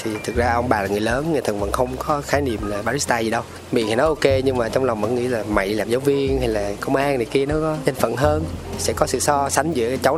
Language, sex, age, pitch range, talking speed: Vietnamese, male, 20-39, 105-135 Hz, 305 wpm